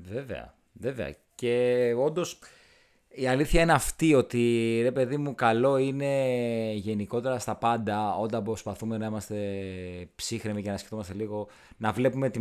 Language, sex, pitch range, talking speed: Greek, male, 100-135 Hz, 140 wpm